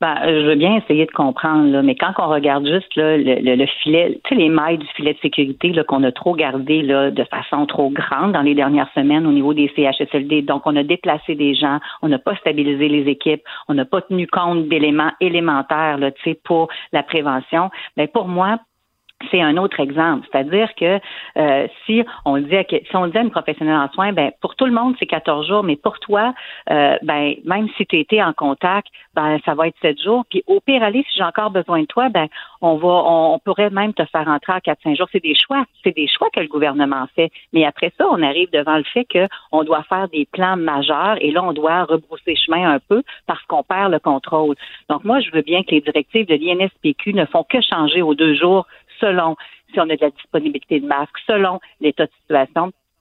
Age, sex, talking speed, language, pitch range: 50-69, female, 230 wpm, French, 150-195 Hz